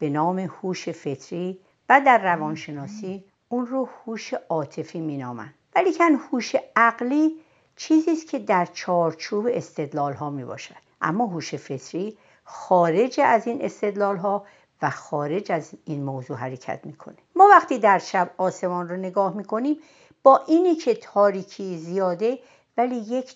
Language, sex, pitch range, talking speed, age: Persian, female, 150-215 Hz, 135 wpm, 60-79